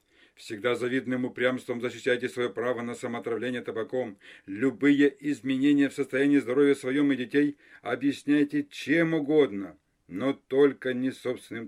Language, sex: Russian, male